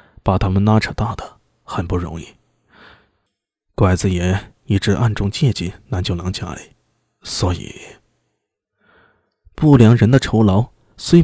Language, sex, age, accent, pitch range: Chinese, male, 20-39, native, 95-135 Hz